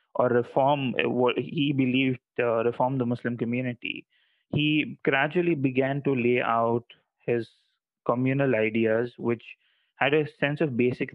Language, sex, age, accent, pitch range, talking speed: English, male, 20-39, Indian, 120-140 Hz, 135 wpm